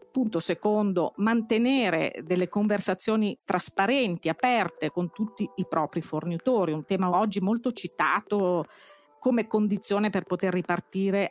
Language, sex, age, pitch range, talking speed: Italian, female, 50-69, 170-225 Hz, 115 wpm